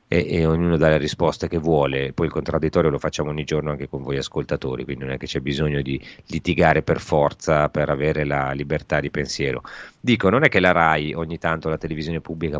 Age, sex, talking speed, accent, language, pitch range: 30-49, male, 220 wpm, native, Italian, 75-85 Hz